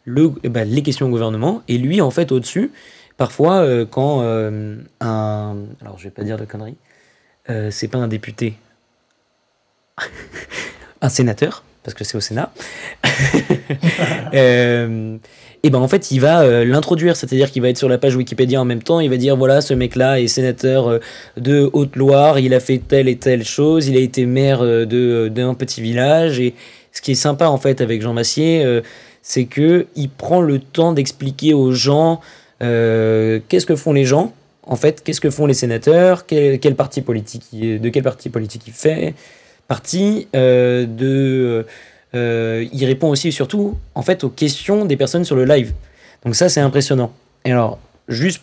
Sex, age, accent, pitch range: male, 20-39, French, 115-145 Hz